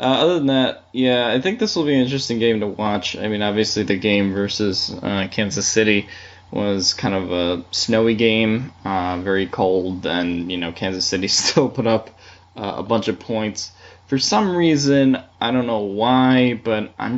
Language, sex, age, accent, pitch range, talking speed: English, male, 10-29, American, 90-115 Hz, 190 wpm